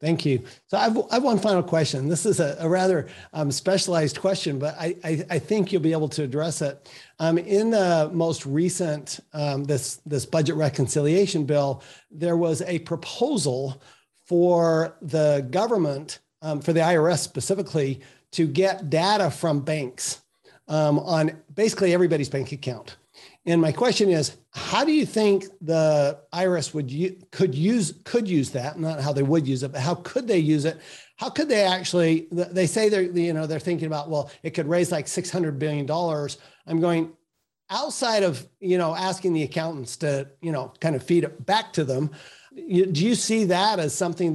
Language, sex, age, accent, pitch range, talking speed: English, male, 50-69, American, 145-180 Hz, 185 wpm